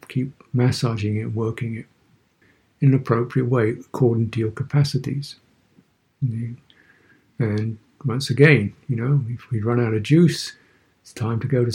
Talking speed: 150 wpm